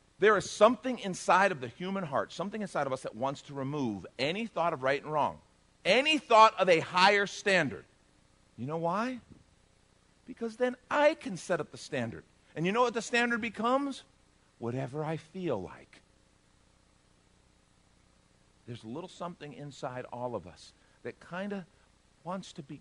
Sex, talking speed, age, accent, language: male, 170 wpm, 50-69, American, English